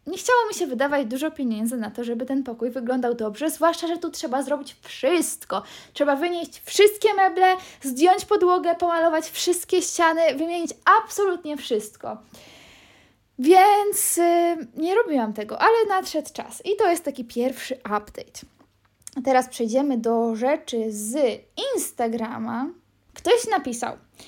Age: 20-39